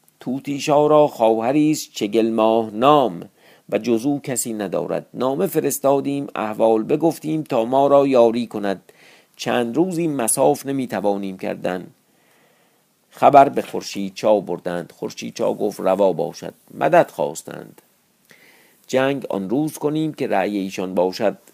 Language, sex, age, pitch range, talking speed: Persian, male, 50-69, 100-150 Hz, 125 wpm